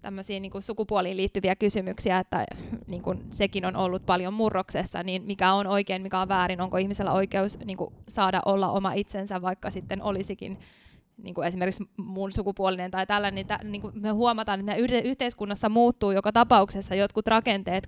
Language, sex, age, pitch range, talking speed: Finnish, female, 20-39, 195-215 Hz, 160 wpm